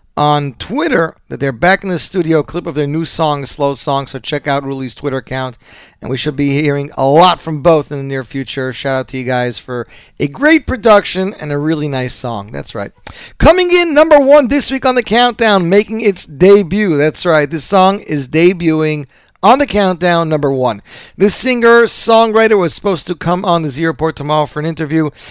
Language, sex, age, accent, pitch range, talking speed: English, male, 40-59, American, 140-195 Hz, 205 wpm